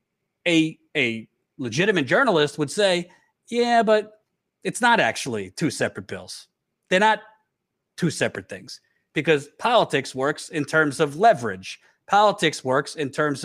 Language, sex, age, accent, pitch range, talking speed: English, male, 40-59, American, 145-215 Hz, 135 wpm